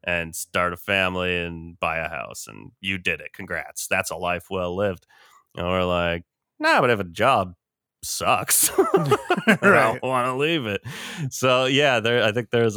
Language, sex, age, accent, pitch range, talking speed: English, male, 30-49, American, 85-110 Hz, 185 wpm